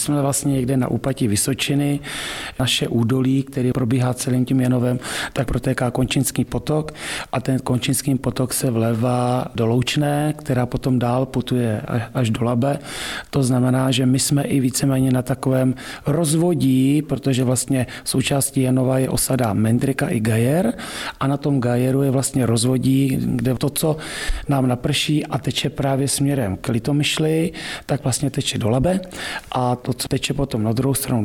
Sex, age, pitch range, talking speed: male, 40-59, 125-135 Hz, 160 wpm